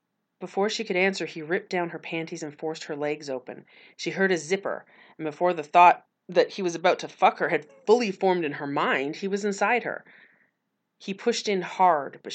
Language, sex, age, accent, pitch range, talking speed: English, female, 30-49, American, 155-195 Hz, 215 wpm